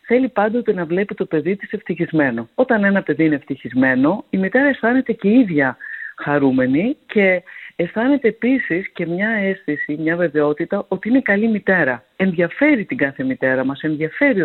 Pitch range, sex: 155-230 Hz, female